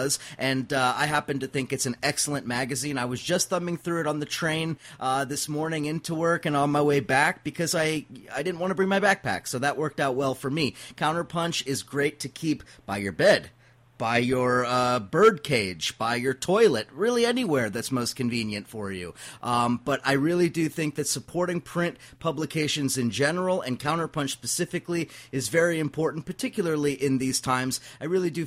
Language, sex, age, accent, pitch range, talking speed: English, male, 30-49, American, 130-160 Hz, 195 wpm